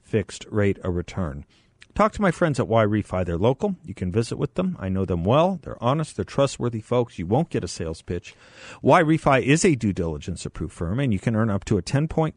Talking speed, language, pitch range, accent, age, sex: 245 wpm, English, 95-135 Hz, American, 50-69, male